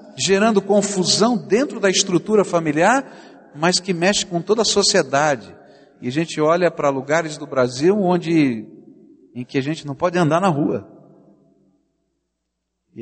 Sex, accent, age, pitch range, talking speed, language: male, Brazilian, 60-79, 155-215 Hz, 145 wpm, Portuguese